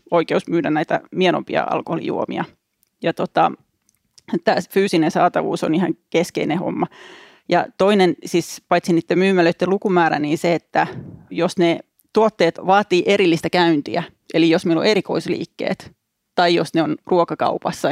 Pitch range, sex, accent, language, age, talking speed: 165-195 Hz, female, native, Finnish, 30-49, 130 wpm